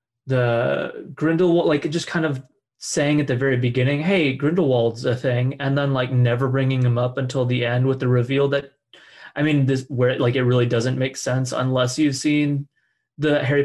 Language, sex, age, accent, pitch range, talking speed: English, male, 20-39, American, 130-155 Hz, 195 wpm